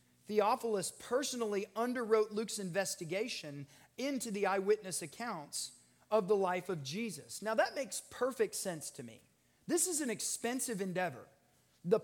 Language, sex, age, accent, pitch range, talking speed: English, male, 30-49, American, 190-250 Hz, 135 wpm